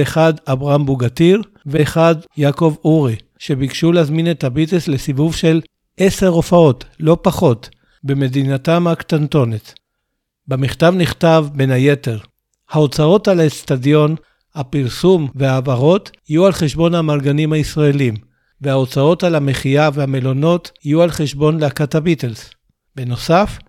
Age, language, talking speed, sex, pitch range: 60-79, Hebrew, 105 wpm, male, 135-165 Hz